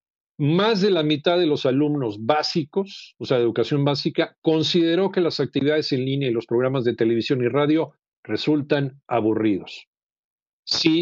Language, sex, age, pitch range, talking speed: Spanish, male, 50-69, 120-155 Hz, 160 wpm